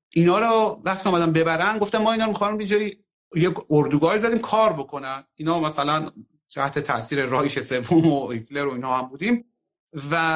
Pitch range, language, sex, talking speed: 140-190 Hz, Persian, male, 175 wpm